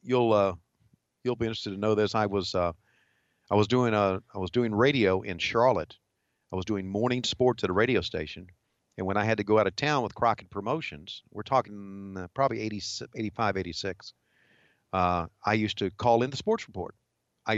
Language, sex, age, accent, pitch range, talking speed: English, male, 50-69, American, 100-125 Hz, 200 wpm